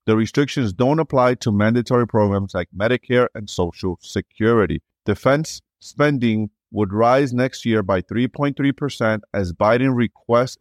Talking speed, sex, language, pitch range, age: 130 wpm, male, English, 100-130 Hz, 30-49